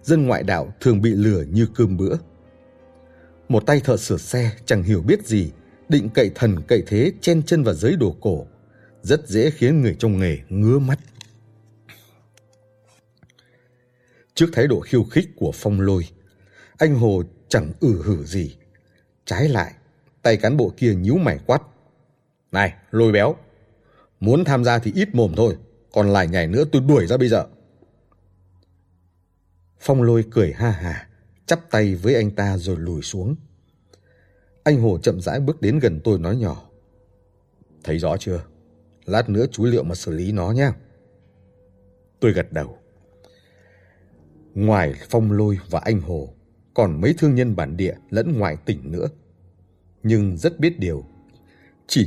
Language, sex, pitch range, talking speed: Vietnamese, male, 95-120 Hz, 160 wpm